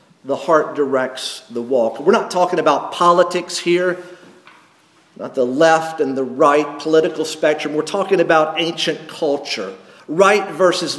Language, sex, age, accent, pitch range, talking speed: English, male, 50-69, American, 165-205 Hz, 140 wpm